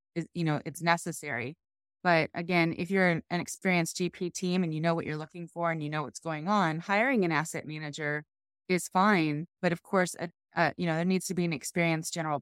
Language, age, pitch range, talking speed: English, 20-39, 155-185 Hz, 220 wpm